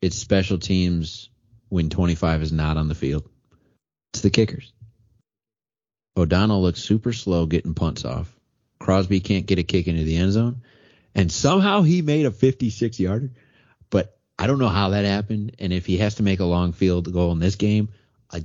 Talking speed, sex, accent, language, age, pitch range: 180 wpm, male, American, English, 30-49, 85-115 Hz